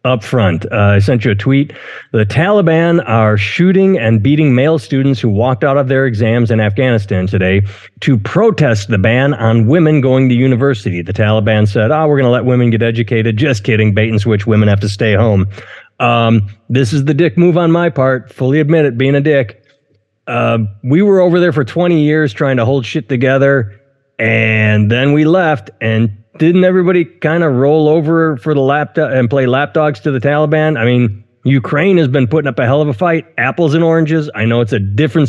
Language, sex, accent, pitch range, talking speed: English, male, American, 110-155 Hz, 215 wpm